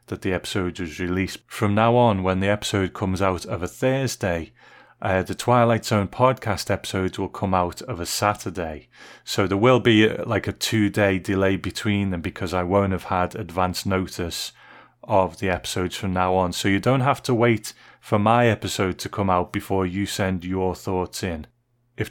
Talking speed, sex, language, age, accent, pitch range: 190 wpm, male, English, 30-49, British, 95-115 Hz